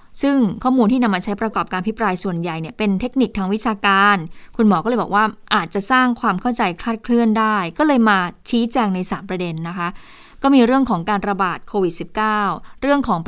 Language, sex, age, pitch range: Thai, female, 20-39, 185-235 Hz